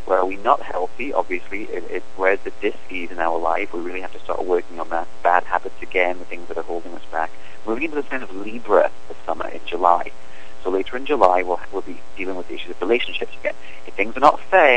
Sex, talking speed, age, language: male, 250 wpm, 40-59, English